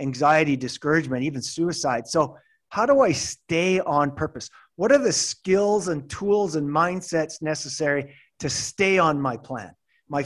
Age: 30-49